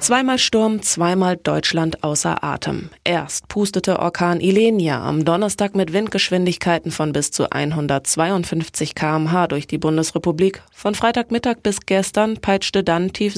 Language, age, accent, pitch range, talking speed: German, 20-39, German, 160-200 Hz, 130 wpm